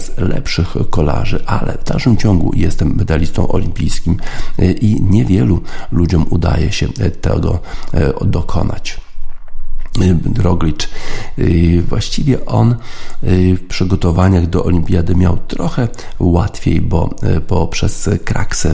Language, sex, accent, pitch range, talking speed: Polish, male, native, 85-95 Hz, 95 wpm